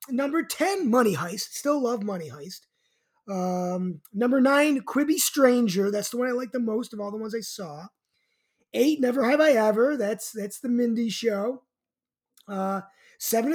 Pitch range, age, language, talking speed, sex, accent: 210-275 Hz, 20-39, English, 170 wpm, male, American